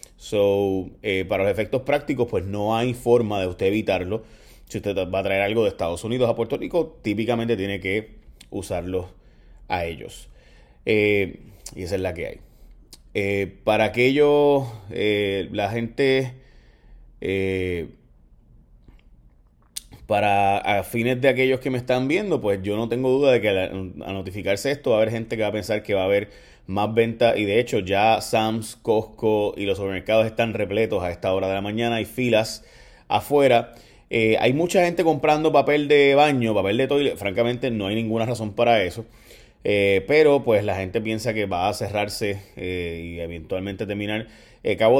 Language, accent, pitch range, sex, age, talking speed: Spanish, Venezuelan, 95-120 Hz, male, 30-49, 175 wpm